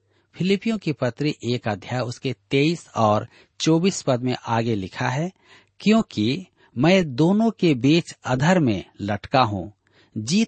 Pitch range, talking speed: 110-160 Hz, 135 wpm